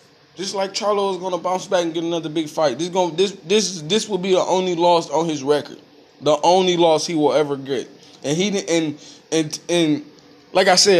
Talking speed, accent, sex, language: 225 wpm, American, male, English